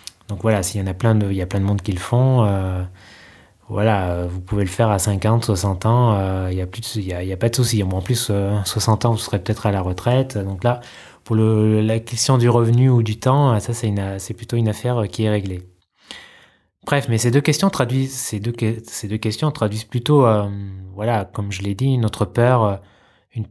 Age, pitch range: 20-39, 100-120 Hz